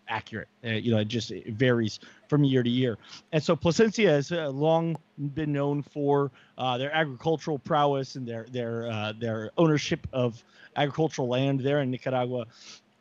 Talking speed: 170 wpm